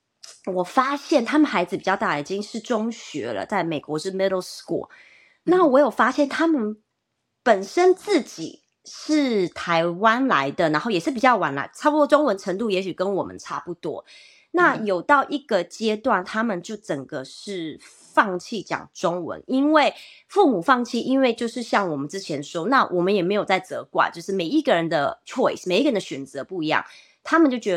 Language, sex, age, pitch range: English, female, 30-49, 180-270 Hz